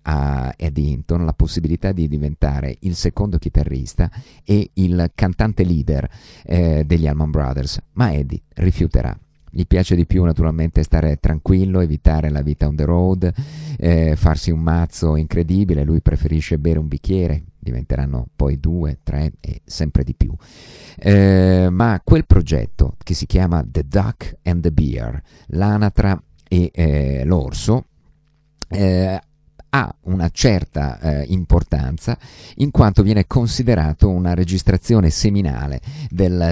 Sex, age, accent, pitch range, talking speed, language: male, 50-69, native, 75-95 Hz, 135 wpm, Italian